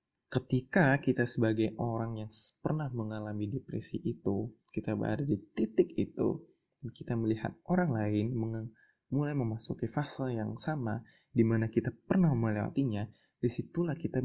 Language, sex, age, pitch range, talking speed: Indonesian, male, 20-39, 105-135 Hz, 130 wpm